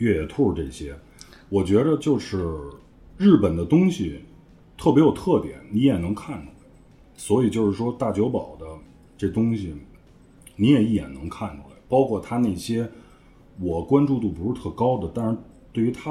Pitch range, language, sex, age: 85-125 Hz, Chinese, male, 30-49